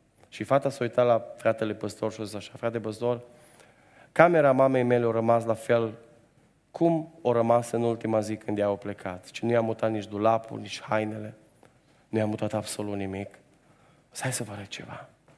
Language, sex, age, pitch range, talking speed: Romanian, male, 30-49, 105-120 Hz, 180 wpm